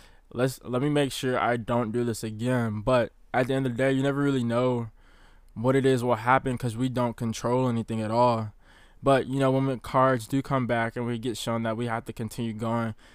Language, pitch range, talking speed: English, 115-130 Hz, 235 wpm